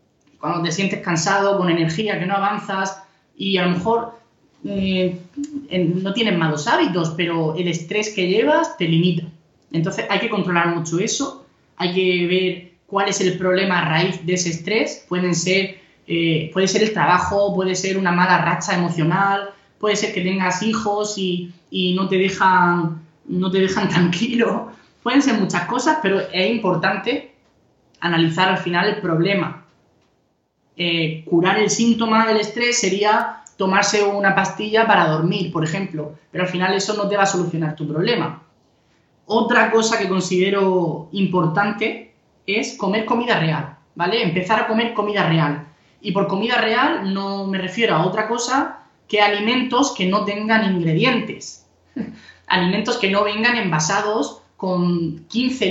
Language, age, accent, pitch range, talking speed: Spanish, 20-39, Spanish, 175-210 Hz, 155 wpm